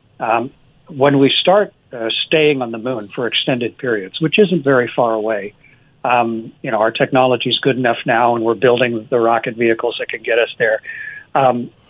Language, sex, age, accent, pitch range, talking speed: English, male, 60-79, American, 115-155 Hz, 190 wpm